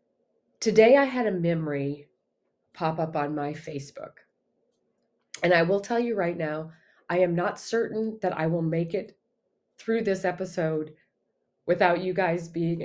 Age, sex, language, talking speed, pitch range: 30-49, female, English, 155 wpm, 155-185 Hz